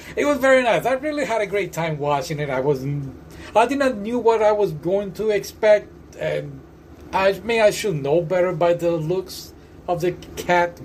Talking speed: 205 wpm